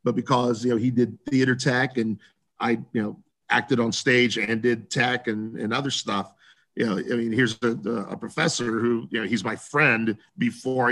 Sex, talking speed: male, 210 wpm